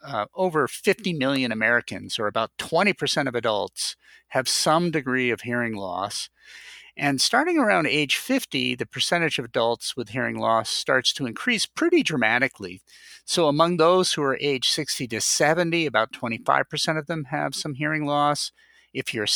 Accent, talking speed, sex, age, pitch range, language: American, 160 wpm, male, 50-69, 120-155 Hz, English